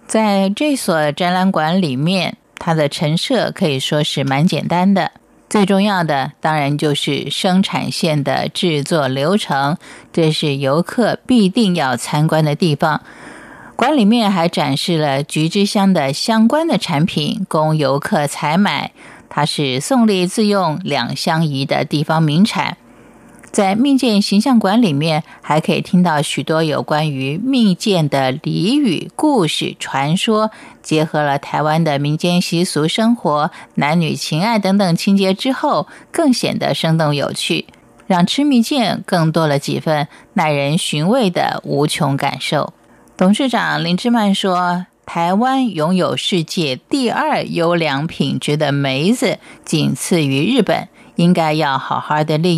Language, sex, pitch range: Chinese, female, 150-205 Hz